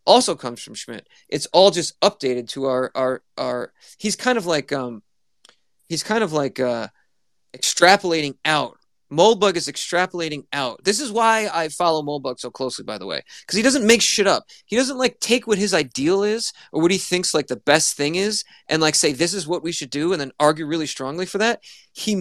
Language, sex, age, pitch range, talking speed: English, male, 30-49, 140-205 Hz, 215 wpm